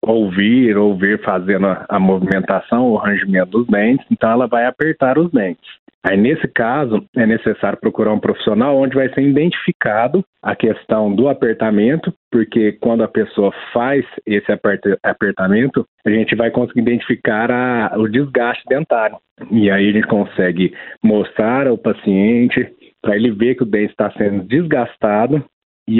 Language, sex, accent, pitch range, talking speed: Portuguese, male, Brazilian, 105-125 Hz, 155 wpm